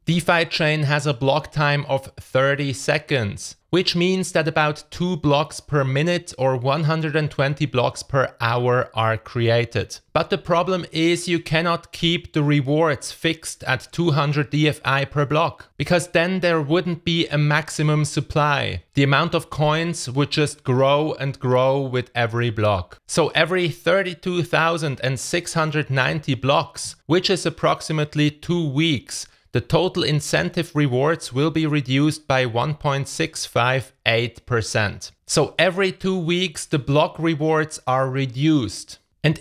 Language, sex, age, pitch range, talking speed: English, male, 30-49, 135-165 Hz, 130 wpm